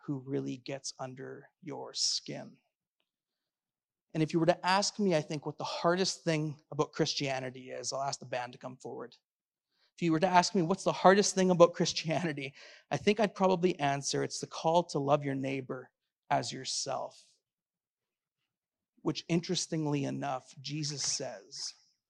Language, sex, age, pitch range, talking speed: English, male, 30-49, 135-165 Hz, 165 wpm